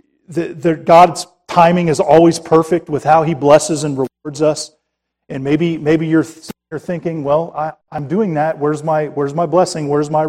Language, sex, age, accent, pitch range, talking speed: English, male, 40-59, American, 145-175 Hz, 190 wpm